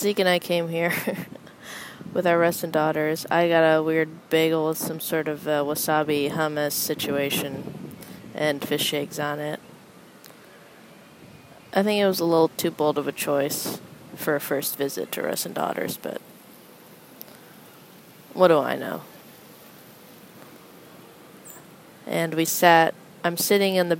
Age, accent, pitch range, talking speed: 20-39, American, 155-180 Hz, 150 wpm